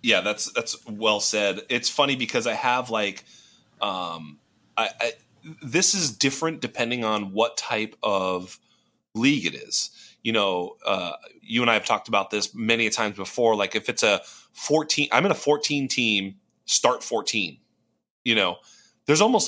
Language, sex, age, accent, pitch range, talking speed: English, male, 30-49, American, 115-150 Hz, 165 wpm